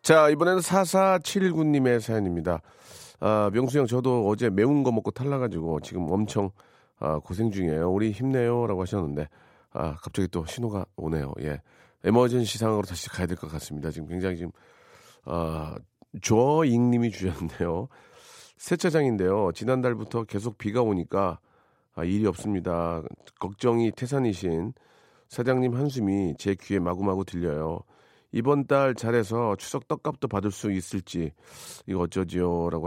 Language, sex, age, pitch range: Korean, male, 40-59, 90-120 Hz